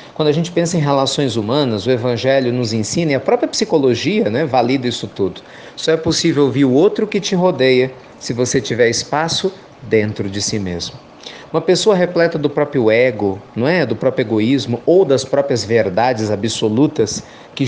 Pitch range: 120-165 Hz